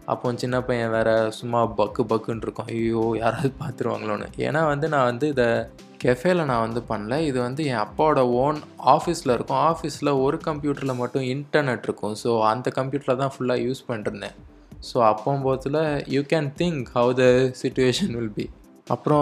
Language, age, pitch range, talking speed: Tamil, 20-39, 120-145 Hz, 155 wpm